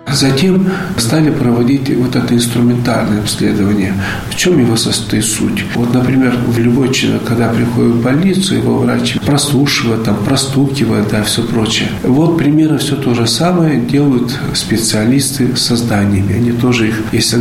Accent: native